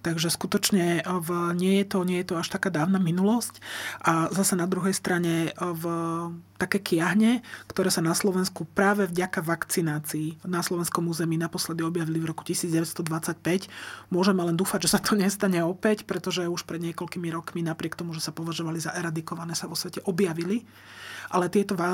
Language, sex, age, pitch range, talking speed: Slovak, male, 30-49, 165-185 Hz, 170 wpm